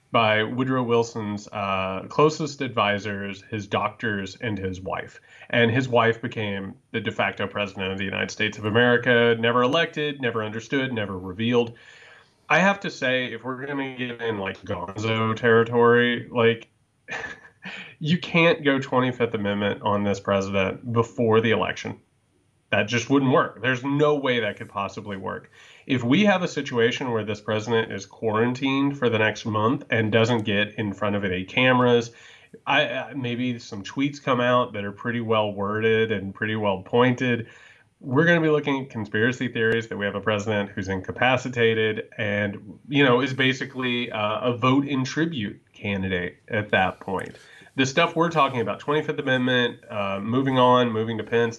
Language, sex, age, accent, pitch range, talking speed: English, male, 30-49, American, 105-125 Hz, 170 wpm